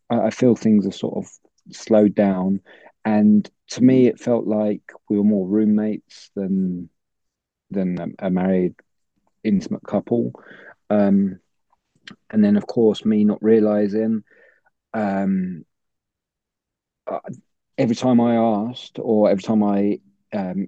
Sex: male